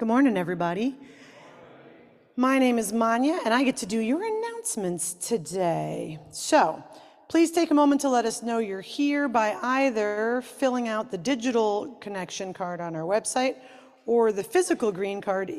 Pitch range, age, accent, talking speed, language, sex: 190-250 Hz, 40-59, American, 160 wpm, English, female